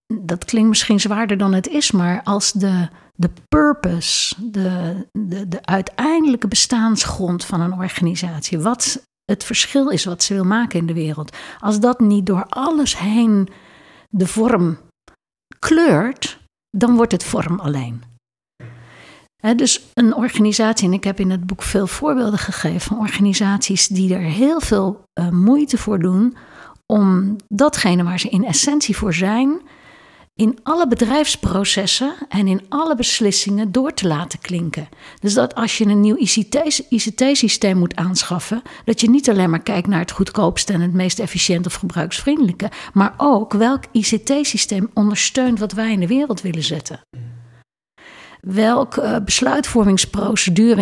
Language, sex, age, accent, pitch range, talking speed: Dutch, female, 60-79, Dutch, 185-235 Hz, 150 wpm